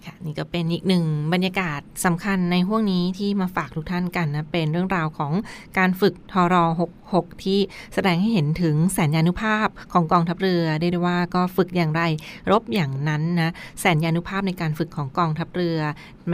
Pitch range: 165-190 Hz